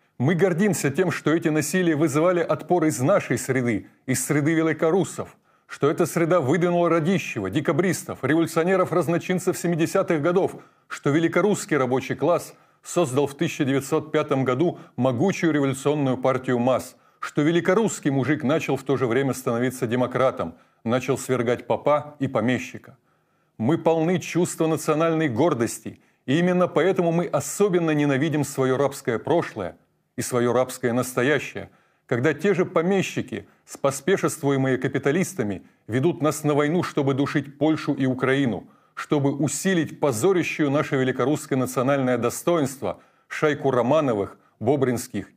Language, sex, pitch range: Russian, male, 130-170 Hz